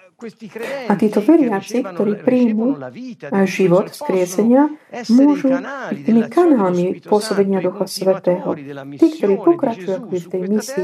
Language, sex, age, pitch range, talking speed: Slovak, female, 40-59, 185-245 Hz, 110 wpm